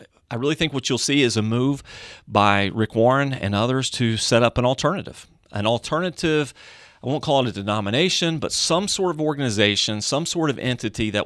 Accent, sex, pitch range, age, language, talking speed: American, male, 100-130 Hz, 40-59, English, 195 wpm